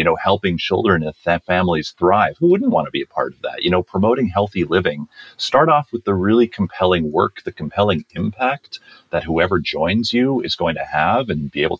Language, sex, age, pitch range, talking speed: English, male, 40-59, 75-110 Hz, 220 wpm